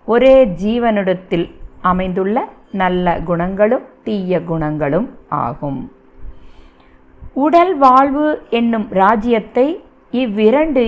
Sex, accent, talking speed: female, native, 70 wpm